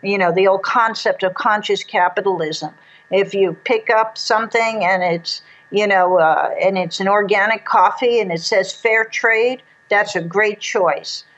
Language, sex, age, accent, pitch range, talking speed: English, female, 50-69, American, 180-220 Hz, 170 wpm